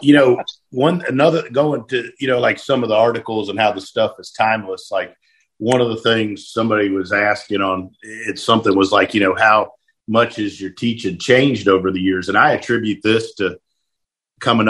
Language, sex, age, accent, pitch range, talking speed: English, male, 50-69, American, 105-120 Hz, 200 wpm